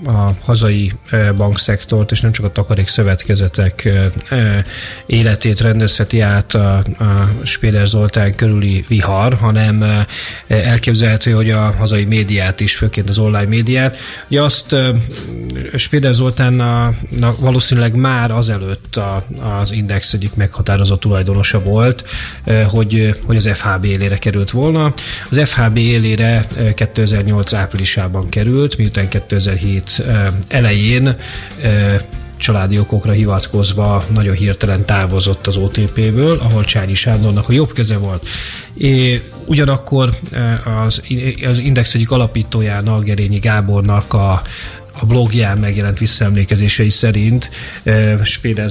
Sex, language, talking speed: male, Hungarian, 110 wpm